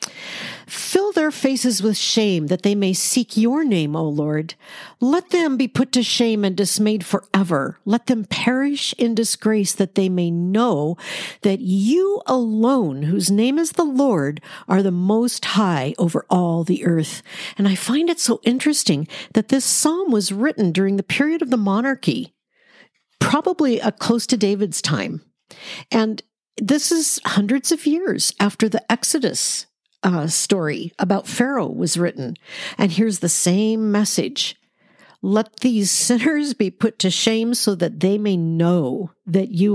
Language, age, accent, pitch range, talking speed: English, 50-69, American, 190-255 Hz, 155 wpm